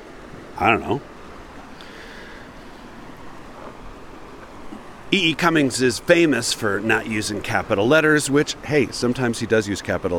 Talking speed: 110 wpm